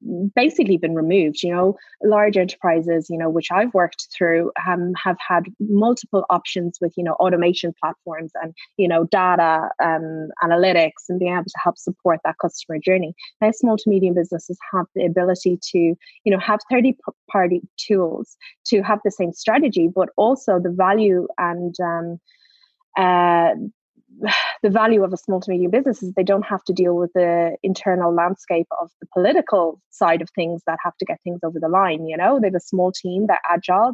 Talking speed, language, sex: 185 wpm, English, female